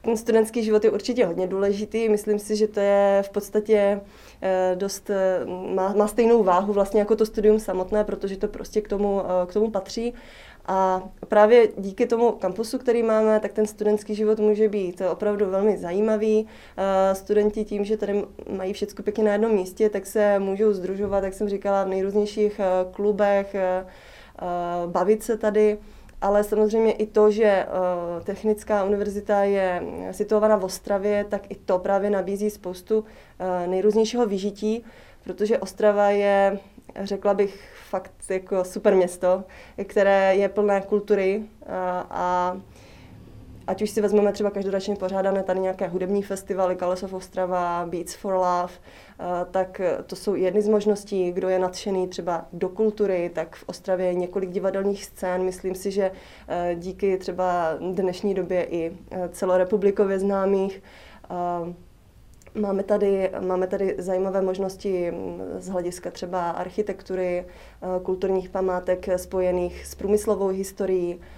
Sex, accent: female, native